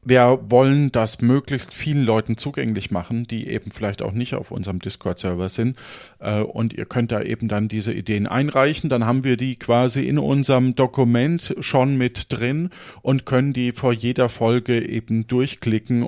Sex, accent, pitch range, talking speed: male, German, 110-135 Hz, 170 wpm